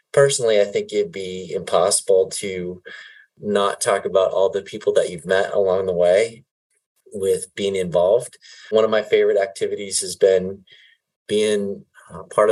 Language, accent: English, American